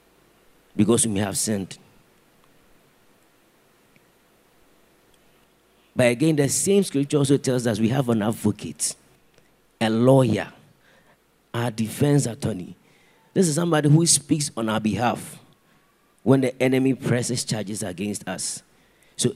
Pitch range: 110-140 Hz